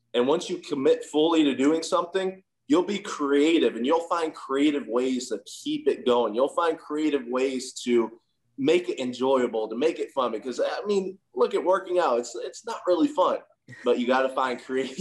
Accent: American